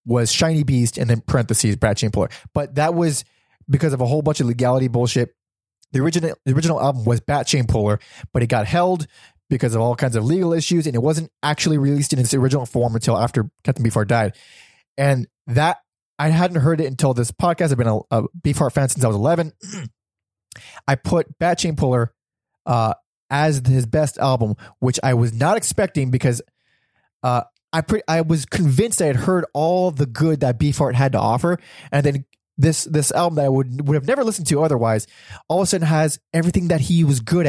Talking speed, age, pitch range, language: 205 wpm, 20-39, 120-155 Hz, English